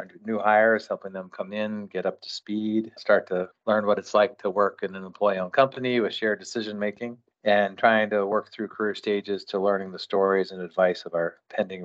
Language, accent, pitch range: English, American, 95-105 Hz